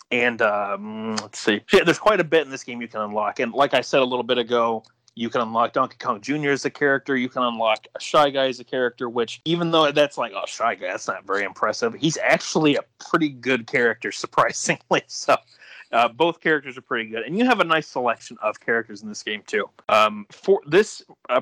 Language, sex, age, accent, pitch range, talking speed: English, male, 30-49, American, 115-140 Hz, 230 wpm